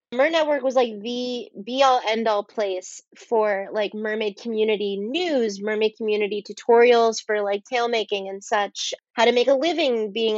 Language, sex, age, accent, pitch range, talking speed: English, female, 30-49, American, 210-245 Hz, 175 wpm